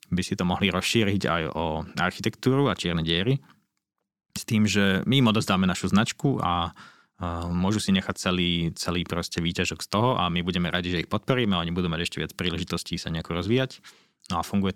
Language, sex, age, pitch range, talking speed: Slovak, male, 20-39, 85-100 Hz, 195 wpm